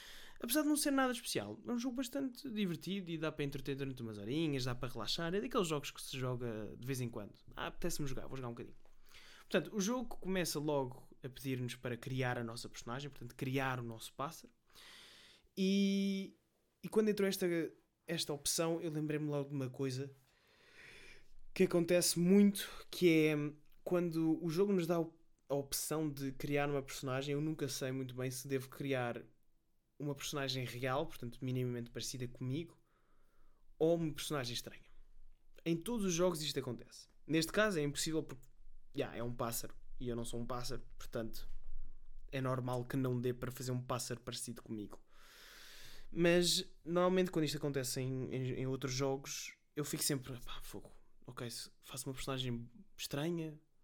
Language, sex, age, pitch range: Portuguese, male, 20-39, 125-165 Hz